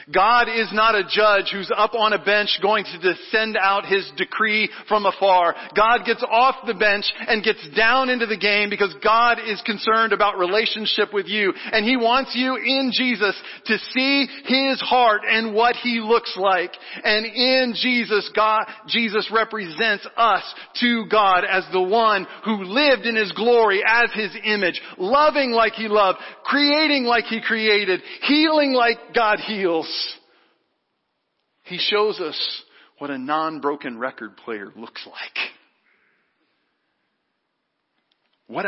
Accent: American